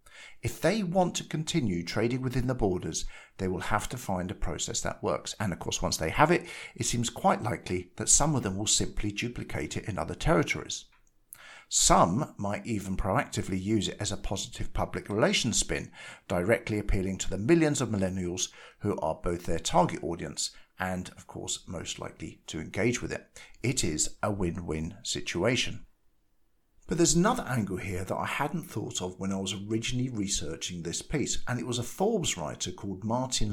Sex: male